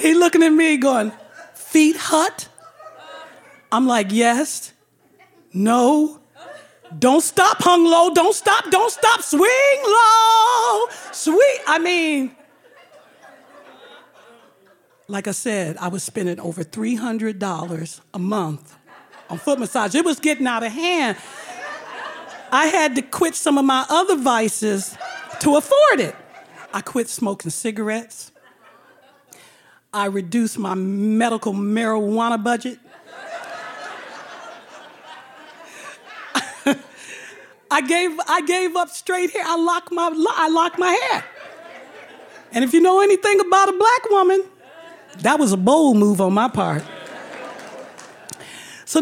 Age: 40-59